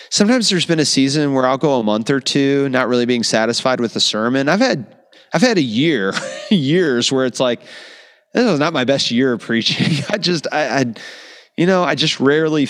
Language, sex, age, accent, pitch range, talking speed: English, male, 30-49, American, 115-155 Hz, 215 wpm